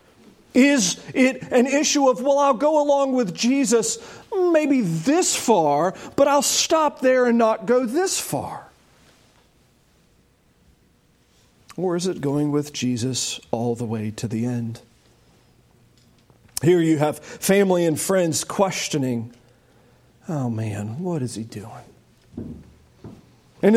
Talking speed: 125 wpm